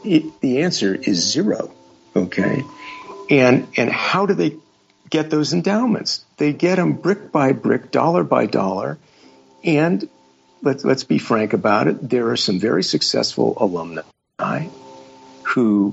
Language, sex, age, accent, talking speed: English, male, 50-69, American, 140 wpm